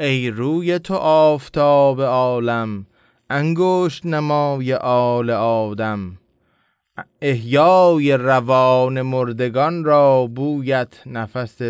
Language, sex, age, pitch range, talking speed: English, male, 20-39, 115-140 Hz, 75 wpm